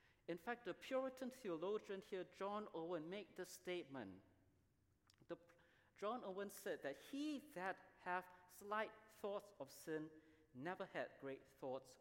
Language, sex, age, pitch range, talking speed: English, male, 50-69, 140-215 Hz, 135 wpm